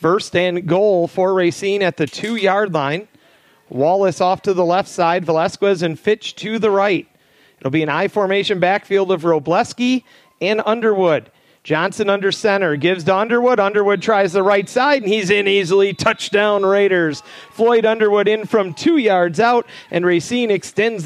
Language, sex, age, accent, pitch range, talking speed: English, male, 40-59, American, 180-220 Hz, 160 wpm